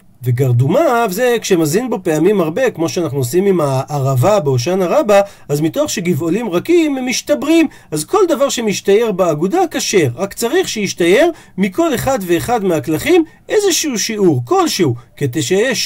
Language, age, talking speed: Hebrew, 40-59, 135 wpm